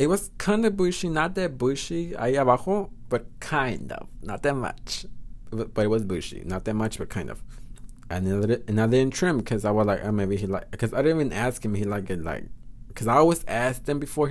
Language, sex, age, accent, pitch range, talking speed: English, male, 20-39, American, 105-125 Hz, 230 wpm